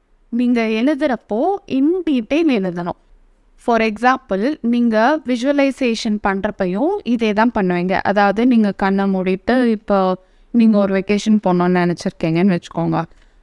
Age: 20-39